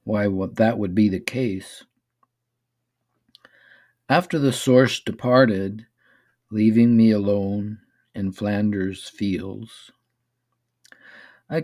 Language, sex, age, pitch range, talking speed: English, male, 50-69, 105-120 Hz, 90 wpm